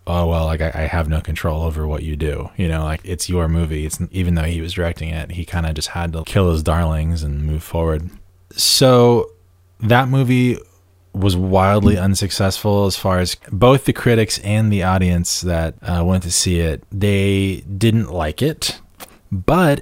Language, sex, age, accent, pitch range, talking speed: English, male, 20-39, American, 85-100 Hz, 190 wpm